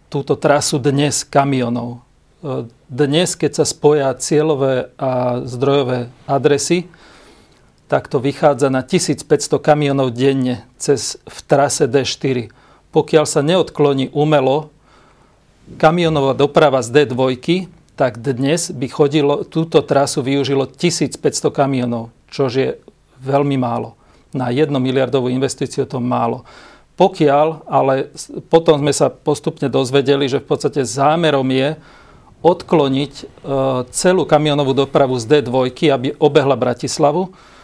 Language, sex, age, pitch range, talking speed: Slovak, male, 40-59, 130-150 Hz, 115 wpm